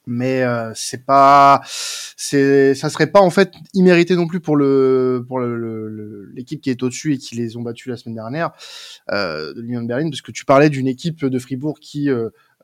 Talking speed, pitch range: 220 wpm, 120-155 Hz